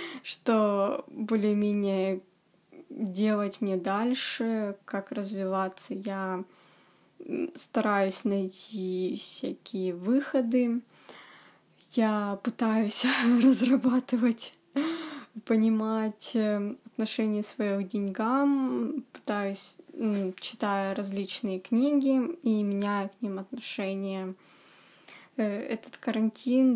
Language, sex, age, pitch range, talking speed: Russian, female, 20-39, 200-245 Hz, 65 wpm